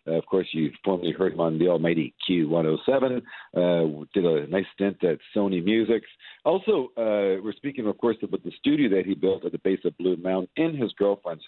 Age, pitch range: 50-69, 95-120 Hz